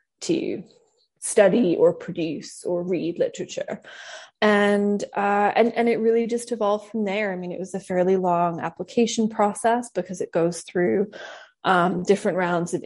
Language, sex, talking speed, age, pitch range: English, female, 160 wpm, 20-39, 180-220 Hz